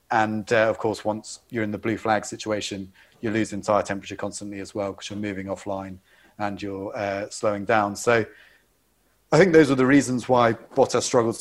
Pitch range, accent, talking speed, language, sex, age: 105-125 Hz, British, 195 wpm, English, male, 30-49